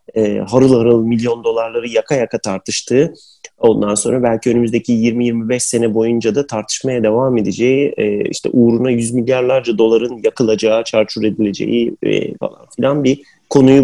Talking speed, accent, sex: 130 wpm, native, male